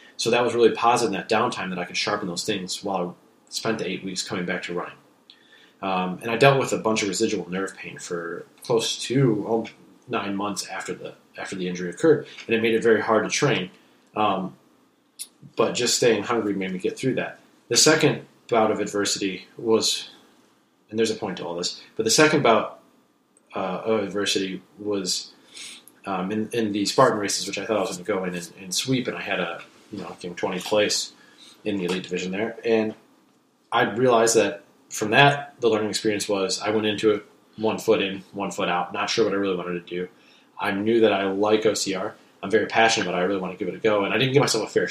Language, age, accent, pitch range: English, 30-49, American, 95-110 Hz